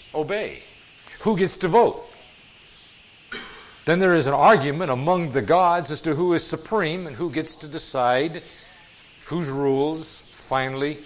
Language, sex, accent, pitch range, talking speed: English, male, American, 130-175 Hz, 140 wpm